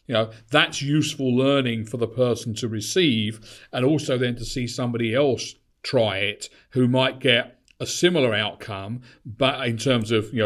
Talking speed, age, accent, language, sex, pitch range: 170 wpm, 50-69, British, English, male, 110-130 Hz